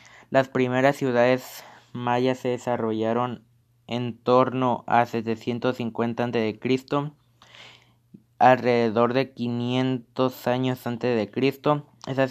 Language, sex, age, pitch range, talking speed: Spanish, male, 20-39, 115-130 Hz, 90 wpm